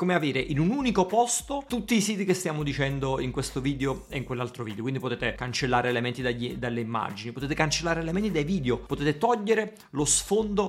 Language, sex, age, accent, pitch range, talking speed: Italian, male, 30-49, native, 125-175 Hz, 190 wpm